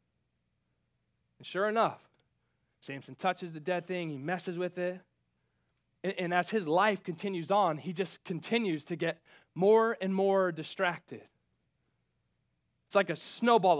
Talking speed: 140 wpm